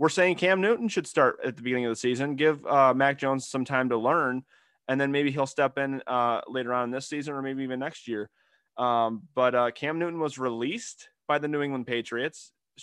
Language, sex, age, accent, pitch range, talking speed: English, male, 20-39, American, 115-140 Hz, 230 wpm